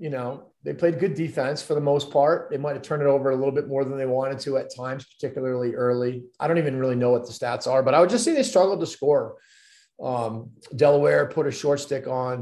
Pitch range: 125-155 Hz